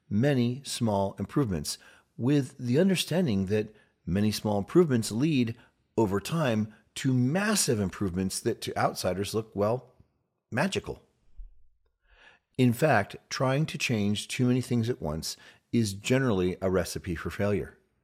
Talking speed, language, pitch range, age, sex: 125 wpm, English, 100-140 Hz, 40-59, male